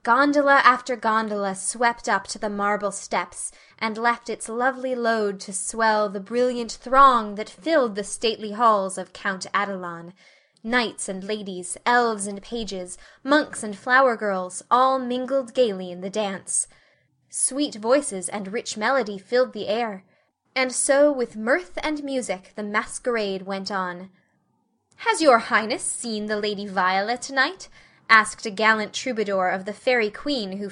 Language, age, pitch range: Korean, 10-29, 200-250 Hz